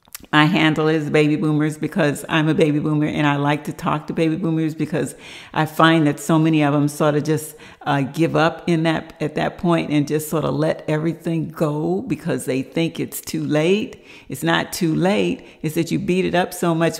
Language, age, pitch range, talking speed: English, 60-79, 155-185 Hz, 220 wpm